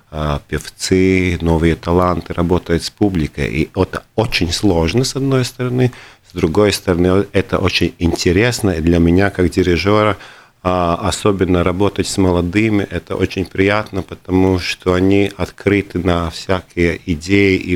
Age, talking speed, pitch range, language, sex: 40-59, 130 wpm, 85-100 Hz, Russian, male